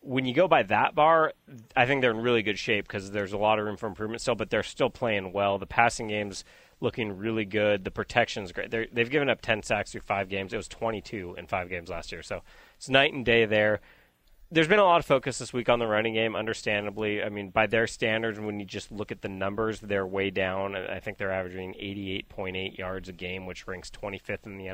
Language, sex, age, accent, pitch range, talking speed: English, male, 30-49, American, 100-120 Hz, 240 wpm